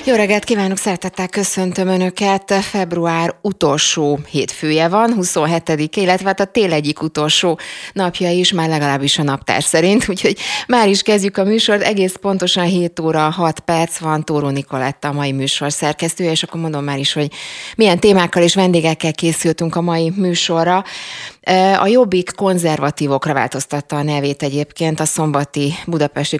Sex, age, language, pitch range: female, 20-39, Hungarian, 145-175 Hz